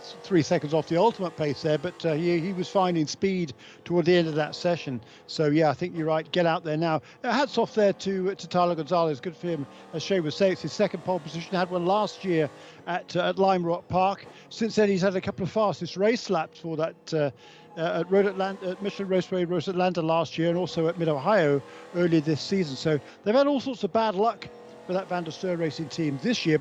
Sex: male